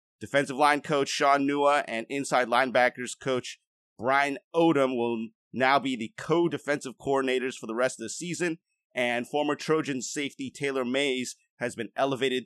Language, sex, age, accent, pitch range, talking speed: English, male, 30-49, American, 125-160 Hz, 155 wpm